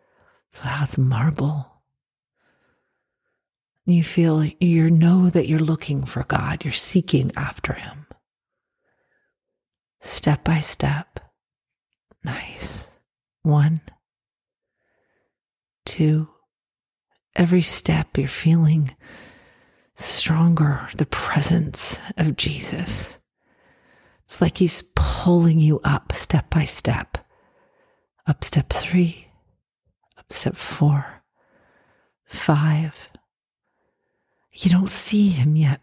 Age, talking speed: 40-59, 85 wpm